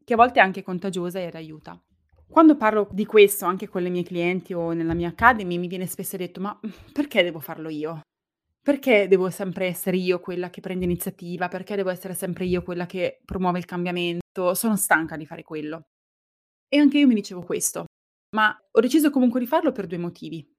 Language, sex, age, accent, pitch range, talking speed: Italian, female, 20-39, native, 175-225 Hz, 200 wpm